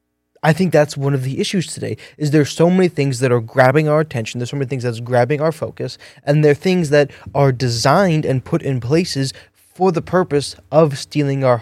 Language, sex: English, male